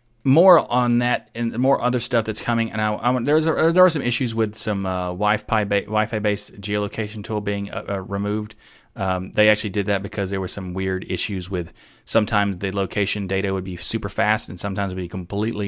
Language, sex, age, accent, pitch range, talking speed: English, male, 30-49, American, 100-115 Hz, 220 wpm